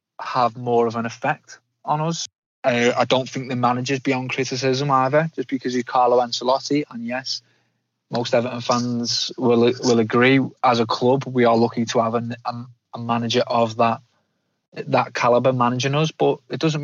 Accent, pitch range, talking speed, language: British, 115-135 Hz, 180 wpm, English